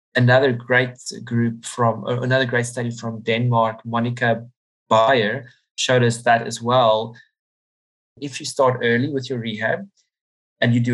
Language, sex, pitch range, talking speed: English, male, 115-125 Hz, 145 wpm